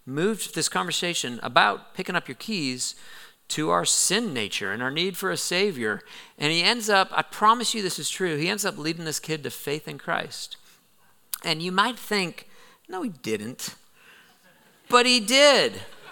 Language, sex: English, male